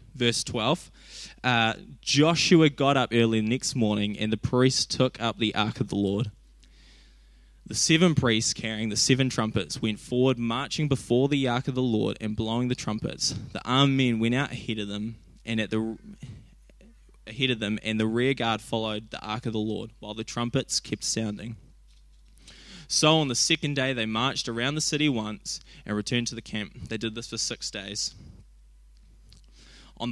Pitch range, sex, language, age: 105-125 Hz, male, English, 10-29